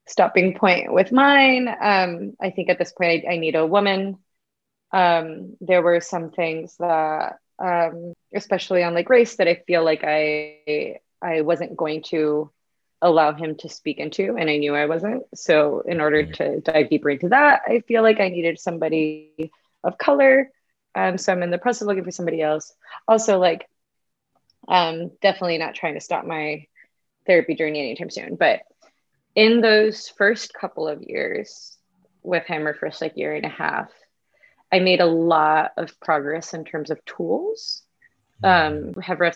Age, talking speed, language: 20-39, 175 wpm, English